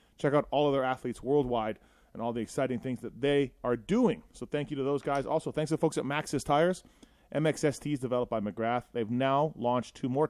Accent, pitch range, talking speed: American, 120-155 Hz, 220 wpm